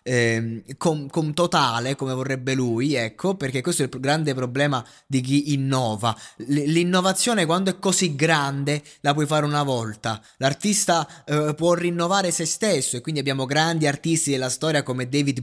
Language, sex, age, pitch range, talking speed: Italian, male, 20-39, 135-175 Hz, 165 wpm